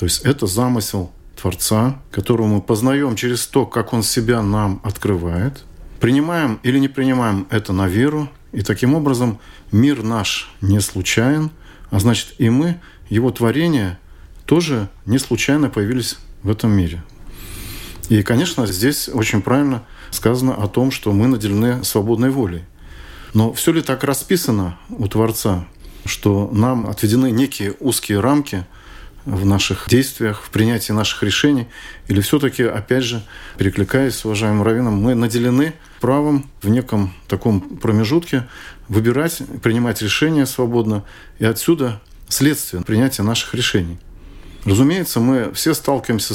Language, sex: Russian, male